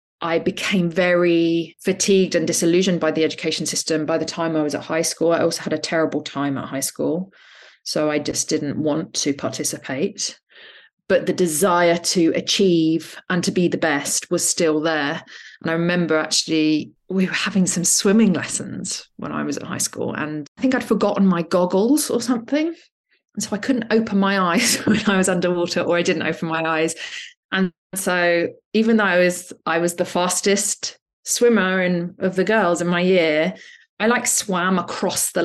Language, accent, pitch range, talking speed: English, British, 165-215 Hz, 190 wpm